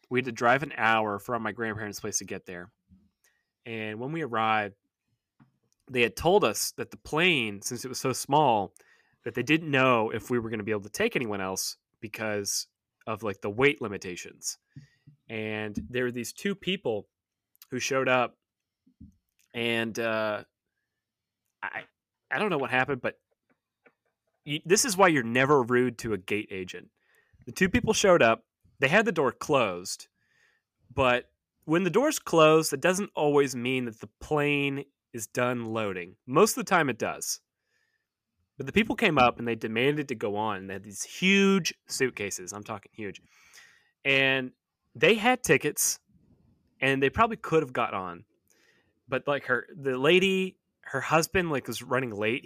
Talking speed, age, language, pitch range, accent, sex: 175 wpm, 30-49, English, 110-145 Hz, American, male